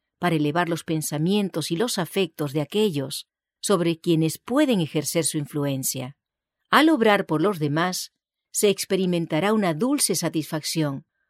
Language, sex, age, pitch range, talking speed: English, female, 40-59, 160-220 Hz, 135 wpm